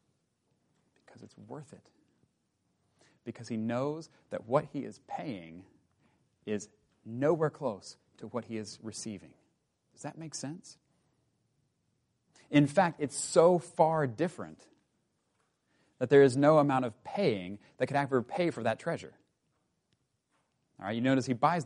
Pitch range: 115-150 Hz